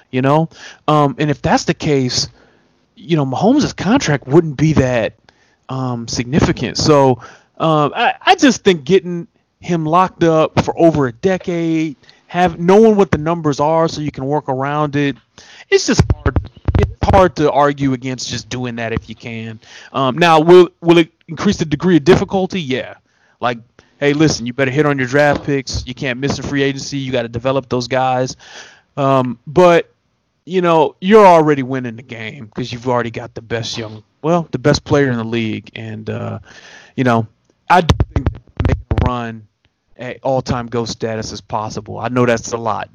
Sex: male